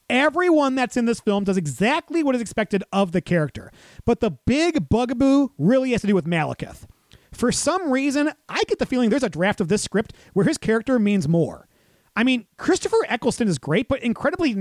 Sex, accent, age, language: male, American, 30-49, English